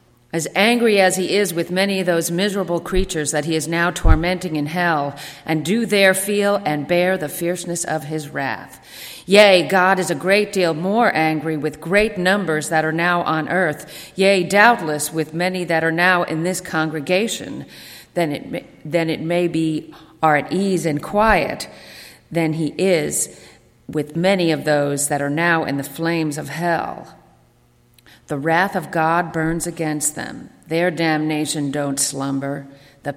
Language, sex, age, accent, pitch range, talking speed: English, female, 40-59, American, 150-190 Hz, 165 wpm